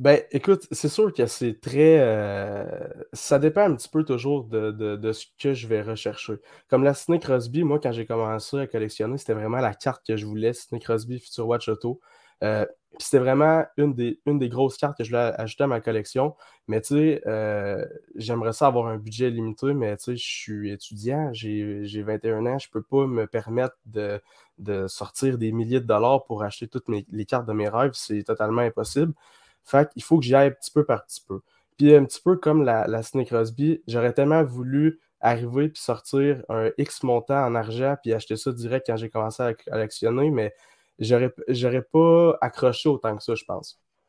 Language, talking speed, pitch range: French, 210 wpm, 110-145 Hz